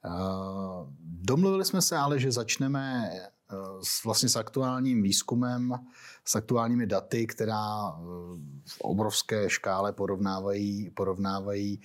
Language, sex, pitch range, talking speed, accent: Czech, male, 100-125 Hz, 95 wpm, native